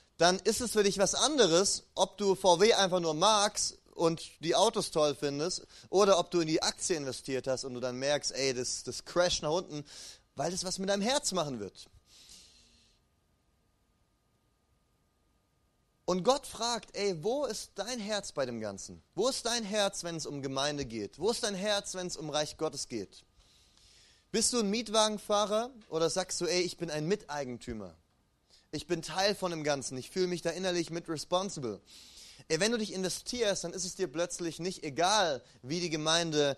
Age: 30-49